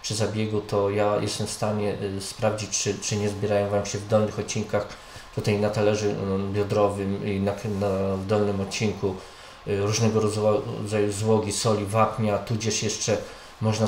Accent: Polish